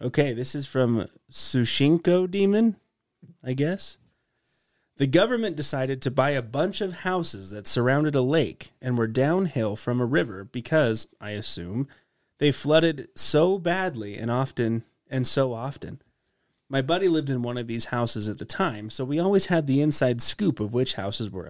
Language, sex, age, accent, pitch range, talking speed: English, male, 30-49, American, 115-150 Hz, 170 wpm